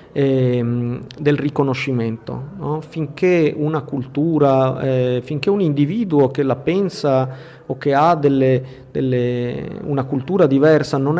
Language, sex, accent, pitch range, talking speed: Italian, male, native, 130-150 Hz, 100 wpm